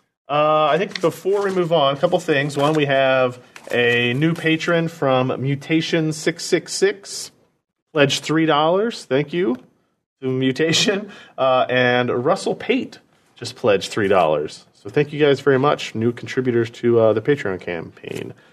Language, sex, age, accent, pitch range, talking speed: English, male, 30-49, American, 125-160 Hz, 145 wpm